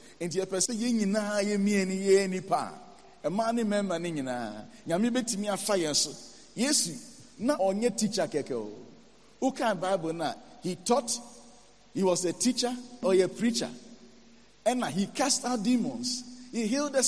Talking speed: 80 wpm